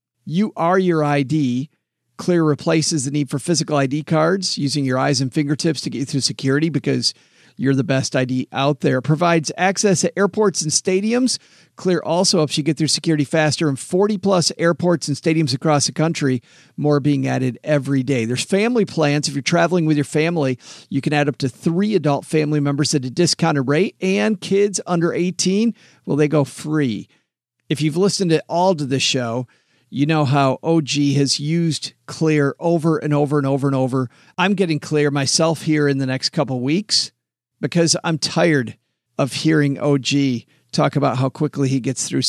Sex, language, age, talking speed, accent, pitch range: male, English, 50-69, 190 wpm, American, 140-170 Hz